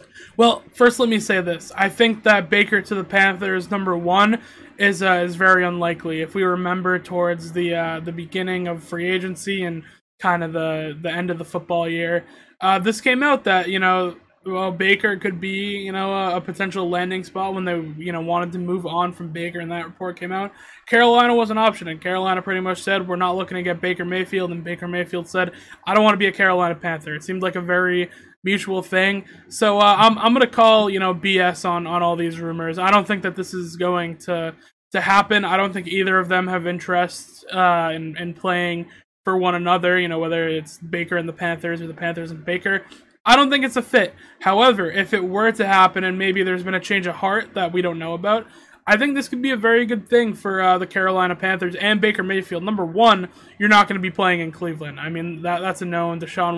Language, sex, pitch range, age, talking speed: English, male, 175-195 Hz, 20-39, 235 wpm